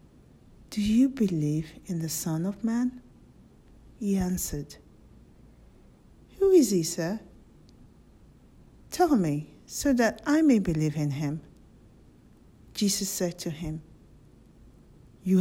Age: 50-69